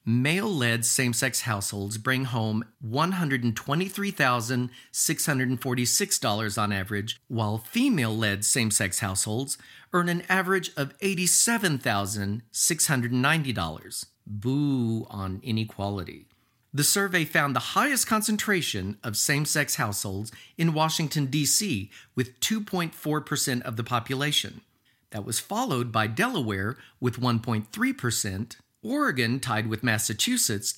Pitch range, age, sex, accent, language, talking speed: 110-155 Hz, 40-59, male, American, English, 95 wpm